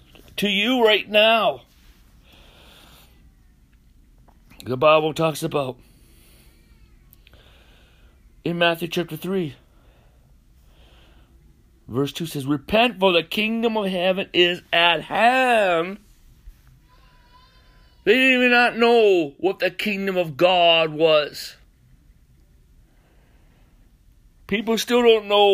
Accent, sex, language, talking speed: American, male, English, 90 wpm